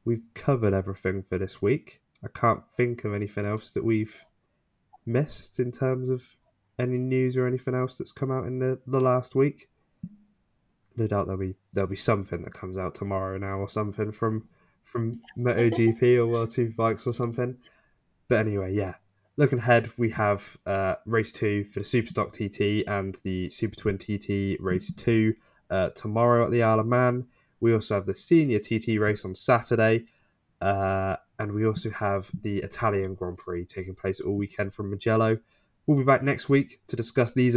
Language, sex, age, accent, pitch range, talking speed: English, male, 10-29, British, 100-125 Hz, 180 wpm